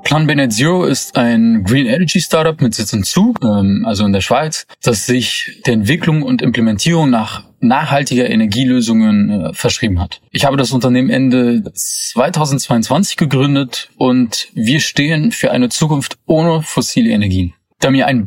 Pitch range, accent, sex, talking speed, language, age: 115-155 Hz, German, male, 150 wpm, German, 20-39